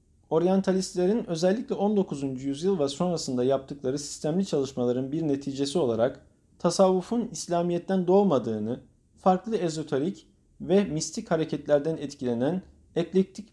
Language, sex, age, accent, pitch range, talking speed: Turkish, male, 40-59, native, 135-190 Hz, 100 wpm